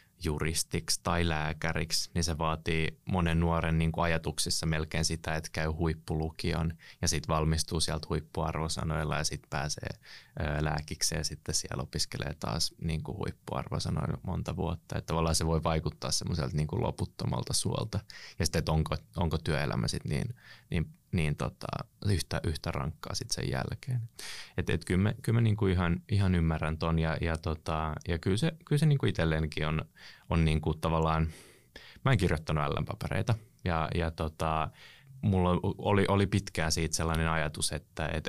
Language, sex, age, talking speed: Finnish, male, 20-39, 145 wpm